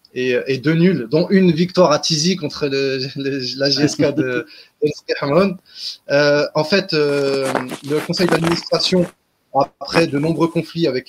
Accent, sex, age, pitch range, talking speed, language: French, male, 20-39, 140-165 Hz, 155 wpm, French